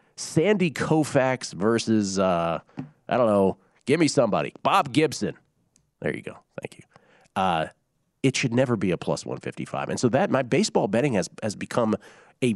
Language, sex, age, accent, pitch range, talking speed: English, male, 40-59, American, 95-130 Hz, 165 wpm